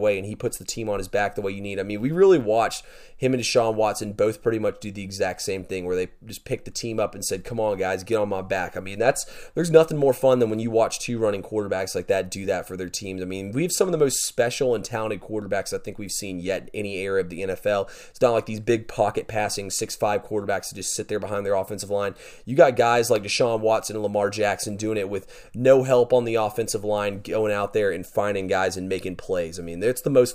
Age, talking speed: 30-49, 275 wpm